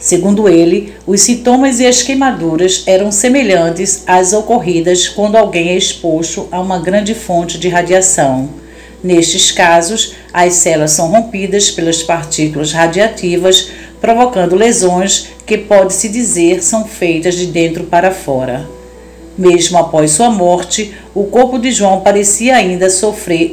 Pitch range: 165-205 Hz